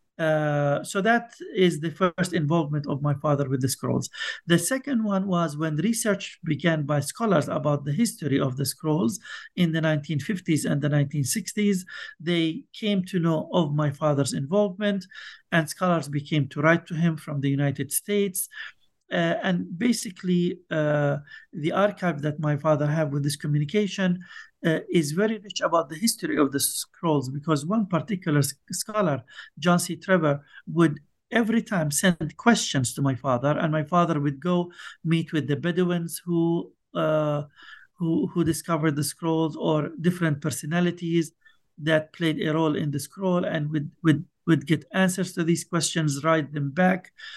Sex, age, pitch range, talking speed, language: male, 50-69, 150-185 Hz, 165 wpm, English